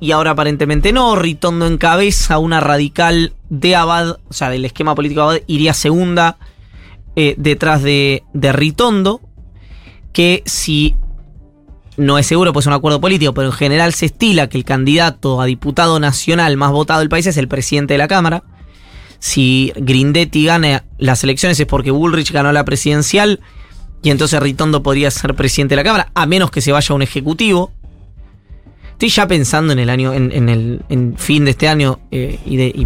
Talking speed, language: 185 wpm, Spanish